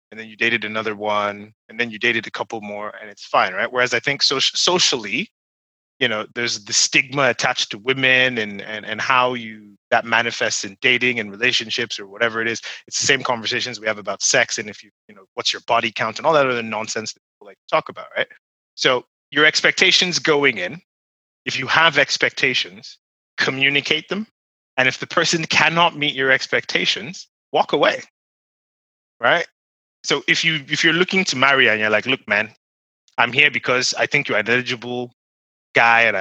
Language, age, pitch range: English, 30-49, 110-150 Hz